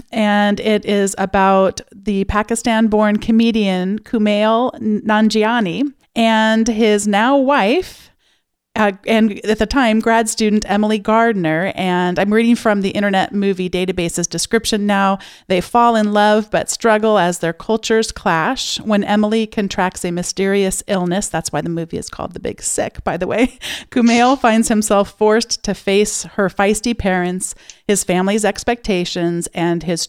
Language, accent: English, American